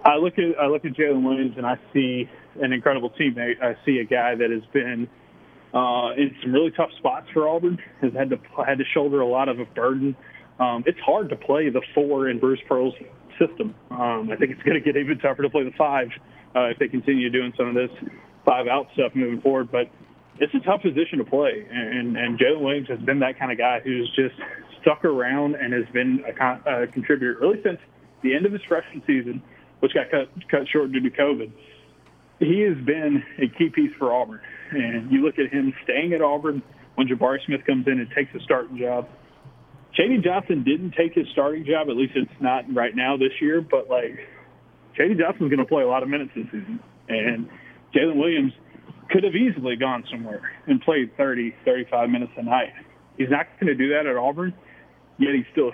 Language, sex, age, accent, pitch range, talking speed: English, male, 20-39, American, 125-150 Hz, 215 wpm